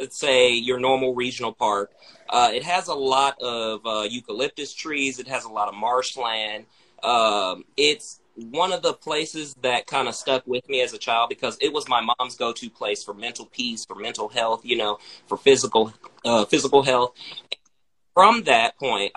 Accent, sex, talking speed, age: American, male, 185 wpm, 30-49